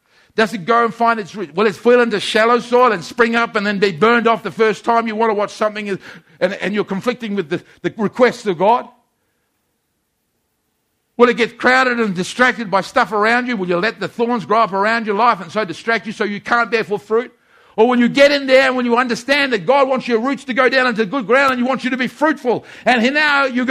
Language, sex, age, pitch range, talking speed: English, male, 50-69, 205-265 Hz, 255 wpm